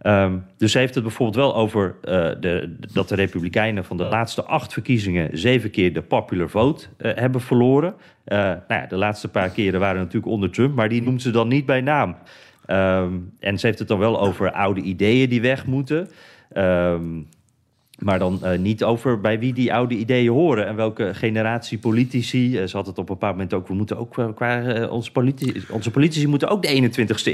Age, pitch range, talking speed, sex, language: 40-59, 100-135 Hz, 200 wpm, male, Dutch